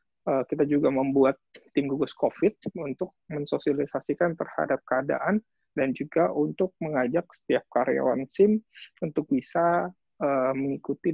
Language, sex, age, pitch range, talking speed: Indonesian, male, 20-39, 130-175 Hz, 110 wpm